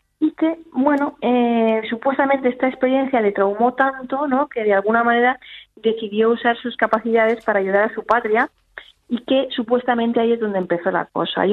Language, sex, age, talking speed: Spanish, female, 20-39, 175 wpm